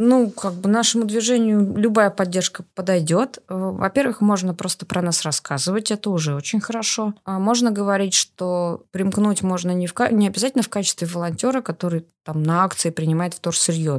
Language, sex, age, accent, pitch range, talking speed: Russian, female, 20-39, native, 175-210 Hz, 165 wpm